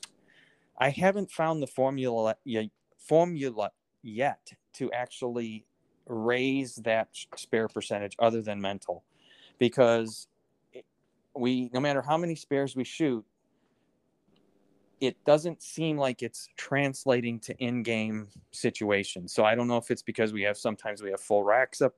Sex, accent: male, American